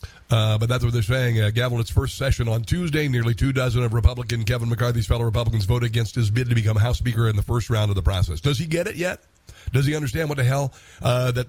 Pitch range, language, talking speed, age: 105-135 Hz, English, 260 wpm, 50-69